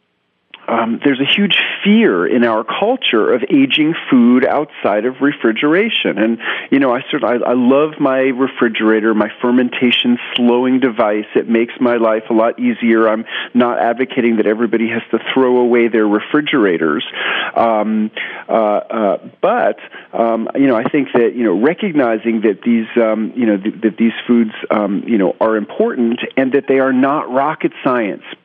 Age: 40-59